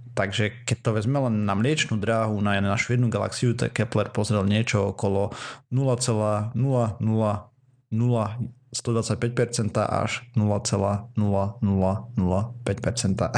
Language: Slovak